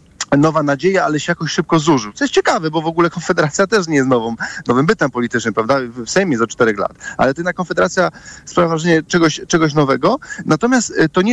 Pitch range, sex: 150-190 Hz, male